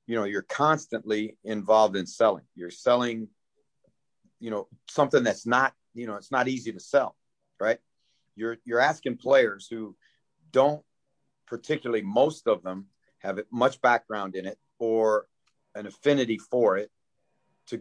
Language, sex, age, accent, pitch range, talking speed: English, male, 40-59, American, 105-125 Hz, 145 wpm